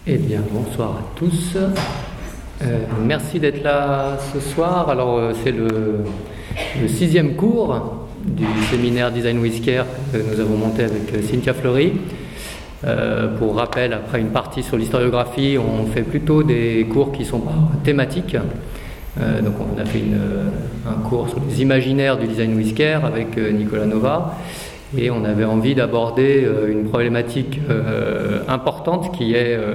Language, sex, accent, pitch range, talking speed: French, male, French, 110-140 Hz, 145 wpm